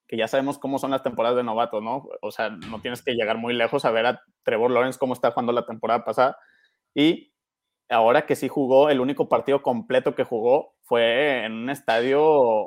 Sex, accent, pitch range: male, Mexican, 125-145 Hz